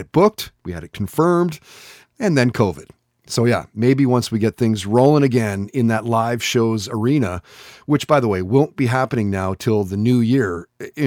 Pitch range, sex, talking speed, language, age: 105-135 Hz, male, 195 wpm, English, 30-49